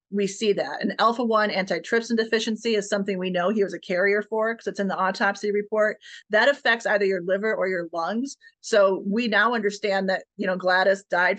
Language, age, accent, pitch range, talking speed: English, 30-49, American, 185-215 Hz, 210 wpm